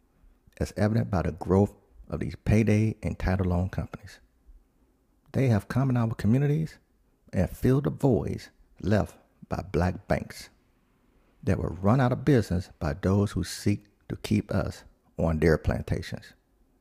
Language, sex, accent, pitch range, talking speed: English, male, American, 90-115 Hz, 150 wpm